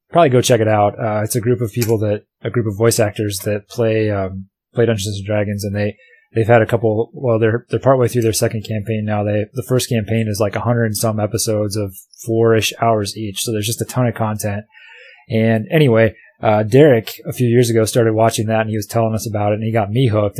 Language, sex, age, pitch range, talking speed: English, male, 20-39, 105-120 Hz, 250 wpm